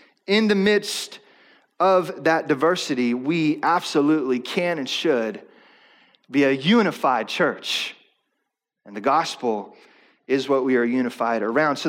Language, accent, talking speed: English, American, 125 wpm